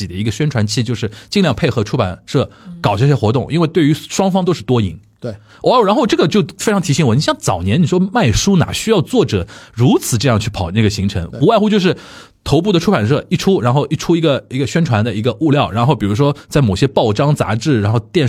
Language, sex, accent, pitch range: Chinese, male, native, 110-170 Hz